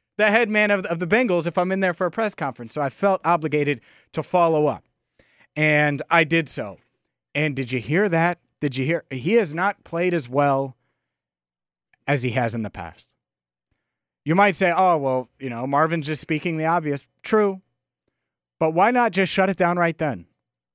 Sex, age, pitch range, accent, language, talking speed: male, 30-49, 120-160 Hz, American, English, 195 wpm